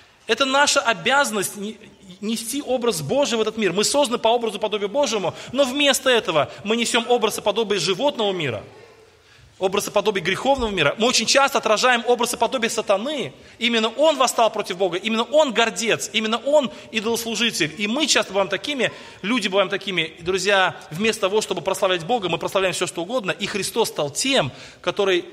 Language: Russian